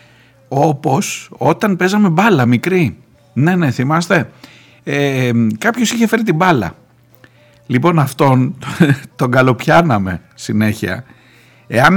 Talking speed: 95 wpm